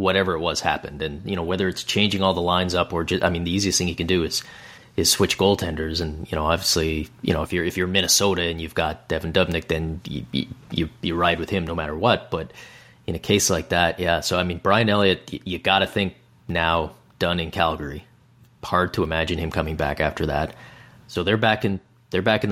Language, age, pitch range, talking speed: English, 30-49, 85-105 Hz, 240 wpm